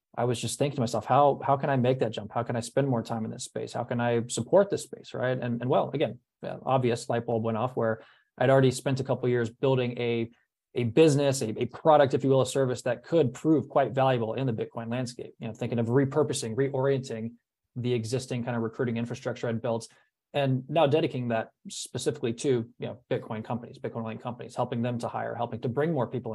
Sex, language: male, English